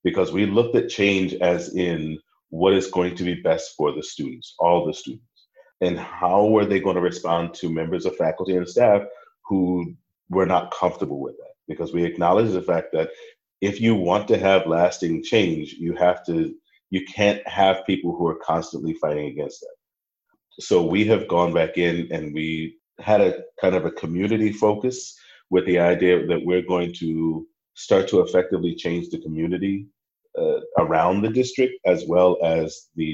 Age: 40-59